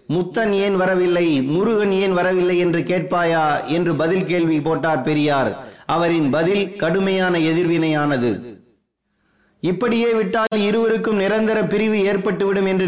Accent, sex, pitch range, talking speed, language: native, male, 170-195 Hz, 90 wpm, Tamil